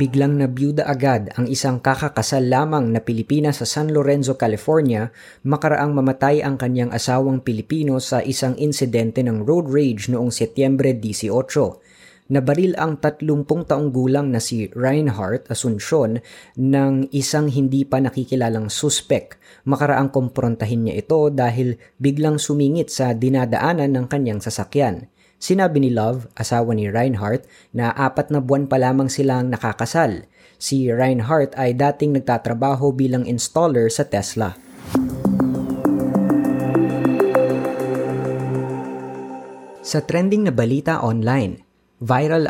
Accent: native